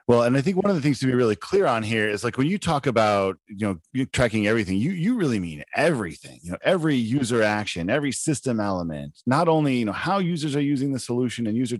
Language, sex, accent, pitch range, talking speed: English, male, American, 105-145 Hz, 250 wpm